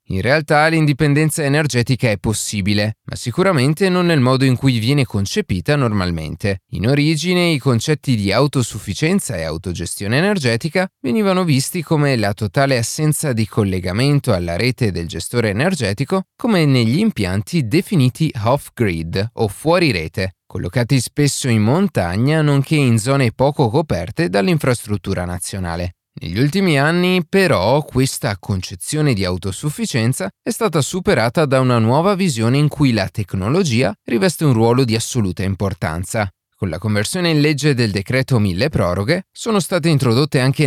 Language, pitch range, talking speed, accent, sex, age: Italian, 105-150 Hz, 140 wpm, native, male, 30-49